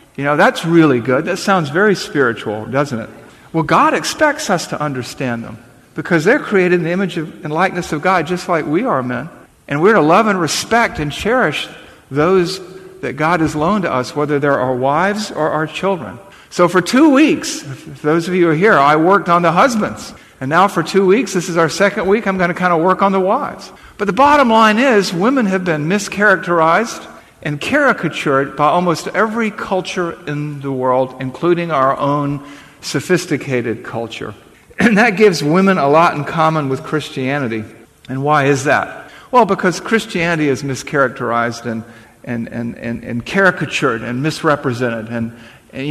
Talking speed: 185 wpm